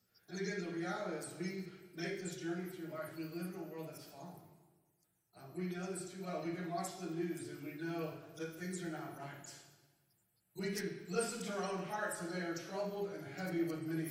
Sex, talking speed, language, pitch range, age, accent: male, 220 wpm, English, 120-165 Hz, 40-59, American